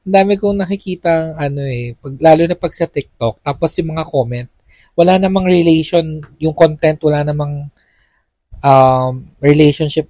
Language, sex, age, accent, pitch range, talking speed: Filipino, male, 20-39, native, 135-185 Hz, 150 wpm